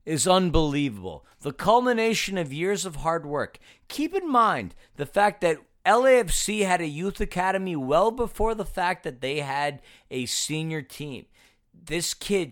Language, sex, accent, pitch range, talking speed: English, male, American, 150-200 Hz, 155 wpm